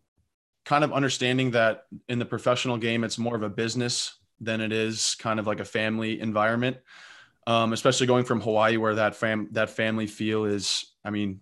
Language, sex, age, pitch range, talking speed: English, male, 20-39, 105-115 Hz, 190 wpm